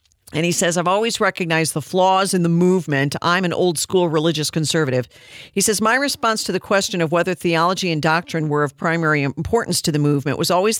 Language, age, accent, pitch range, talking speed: English, 50-69, American, 150-200 Hz, 210 wpm